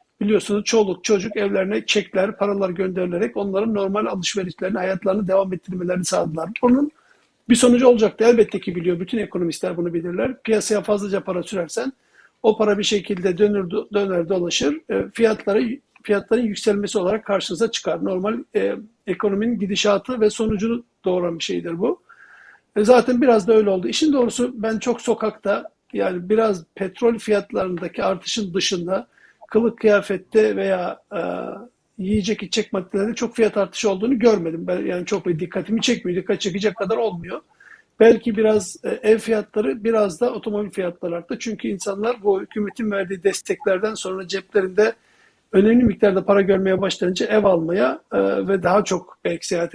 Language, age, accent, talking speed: Turkish, 50-69, native, 145 wpm